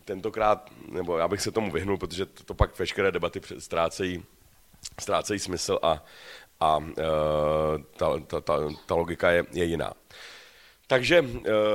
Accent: native